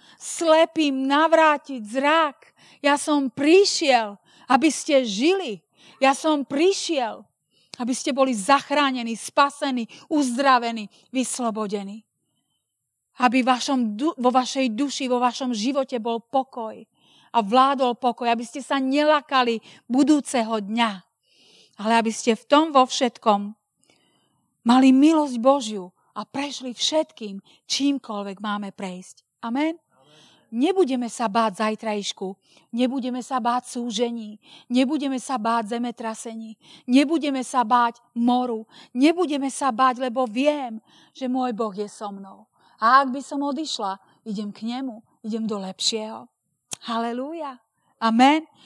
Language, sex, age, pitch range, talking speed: Slovak, female, 40-59, 225-280 Hz, 115 wpm